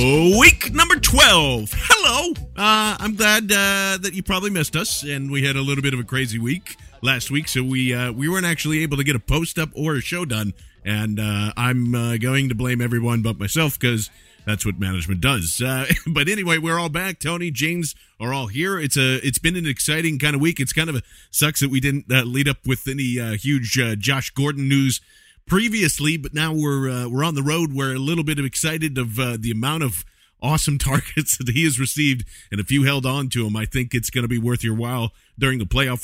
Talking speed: 230 wpm